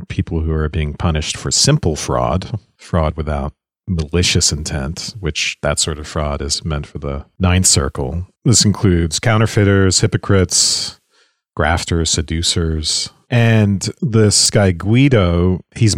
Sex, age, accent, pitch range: male, 40-59, American, 80-105 Hz